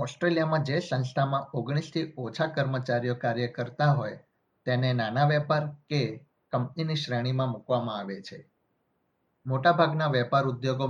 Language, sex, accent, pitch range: Gujarati, male, native, 125-145 Hz